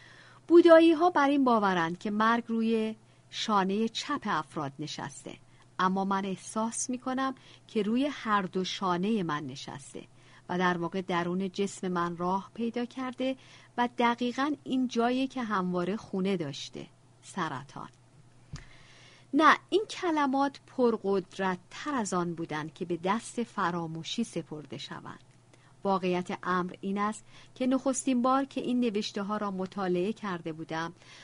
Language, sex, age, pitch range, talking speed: Persian, female, 50-69, 175-235 Hz, 135 wpm